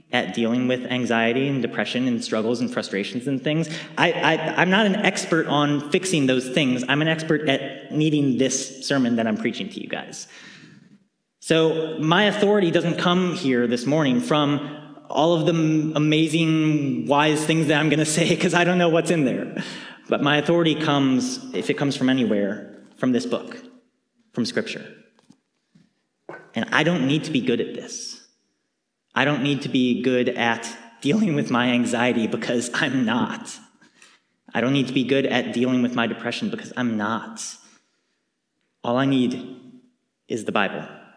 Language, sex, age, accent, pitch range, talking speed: English, male, 30-49, American, 120-165 Hz, 170 wpm